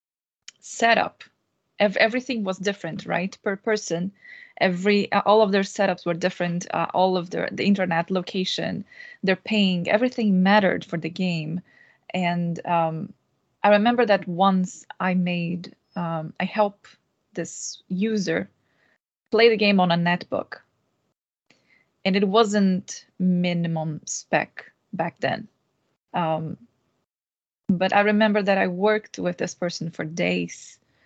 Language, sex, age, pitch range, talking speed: English, female, 20-39, 175-210 Hz, 130 wpm